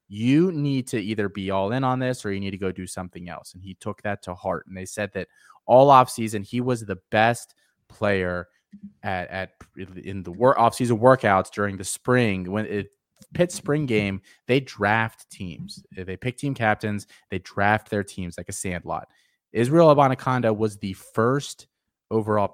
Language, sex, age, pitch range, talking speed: English, male, 20-39, 95-125 Hz, 185 wpm